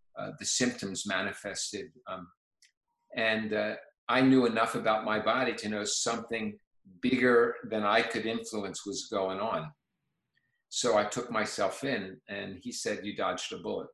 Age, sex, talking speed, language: 50-69, male, 155 wpm, English